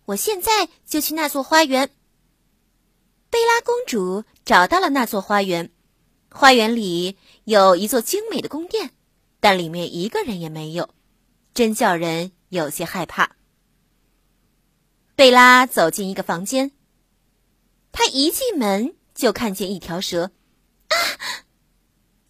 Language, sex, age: Chinese, female, 30-49